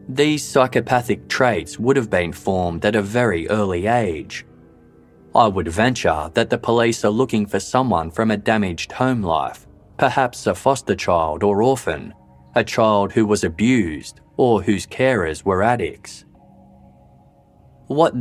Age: 20-39